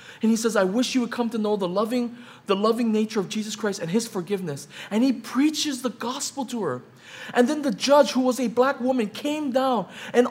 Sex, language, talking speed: male, English, 235 wpm